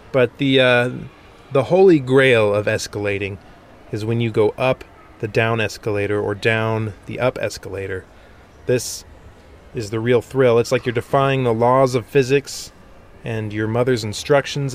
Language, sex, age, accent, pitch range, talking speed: English, male, 30-49, American, 105-135 Hz, 155 wpm